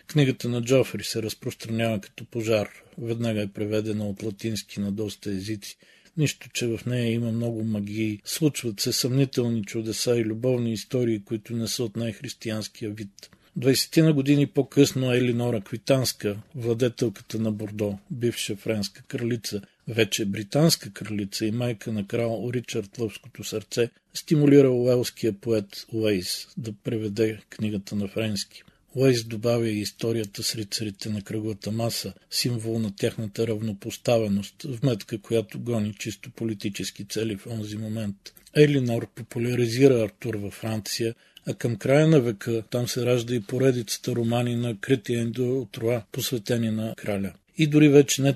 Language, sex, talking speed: Bulgarian, male, 145 wpm